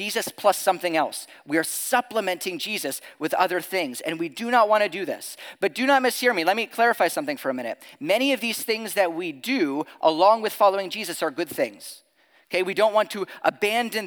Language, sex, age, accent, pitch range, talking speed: English, male, 40-59, American, 170-235 Hz, 220 wpm